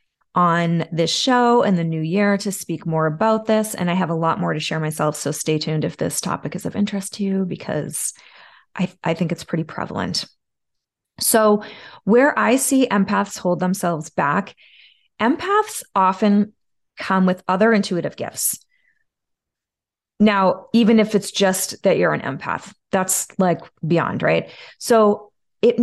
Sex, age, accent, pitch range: female, 20-39, American, 175-225 Hz